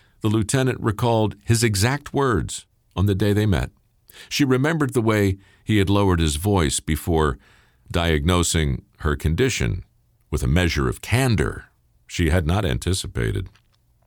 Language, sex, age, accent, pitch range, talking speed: English, male, 50-69, American, 85-115 Hz, 140 wpm